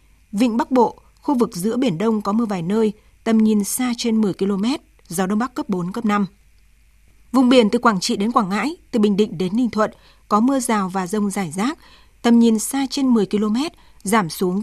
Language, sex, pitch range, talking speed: Vietnamese, female, 200-245 Hz, 220 wpm